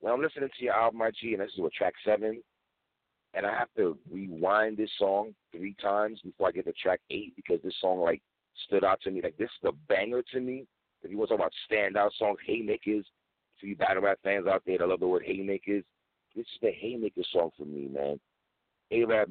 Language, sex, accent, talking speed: English, male, American, 225 wpm